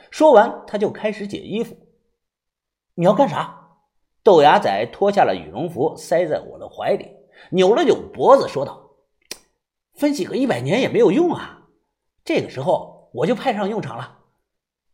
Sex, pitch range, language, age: male, 190-290 Hz, Chinese, 50-69